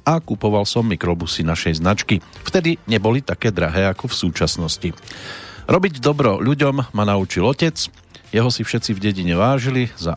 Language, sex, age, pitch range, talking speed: Slovak, male, 40-59, 90-120 Hz, 155 wpm